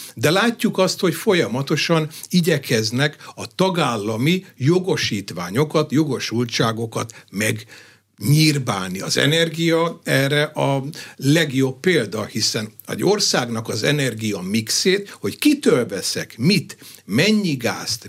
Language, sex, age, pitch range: Hungarian, male, 60-79, 120-160 Hz